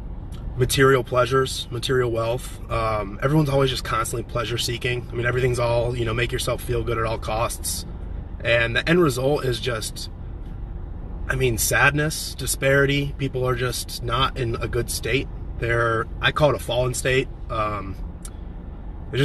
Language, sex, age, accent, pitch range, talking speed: English, male, 20-39, American, 105-130 Hz, 160 wpm